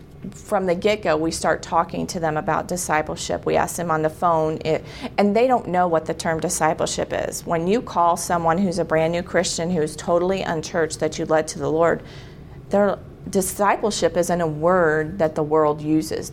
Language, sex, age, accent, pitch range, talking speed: English, female, 40-59, American, 160-200 Hz, 195 wpm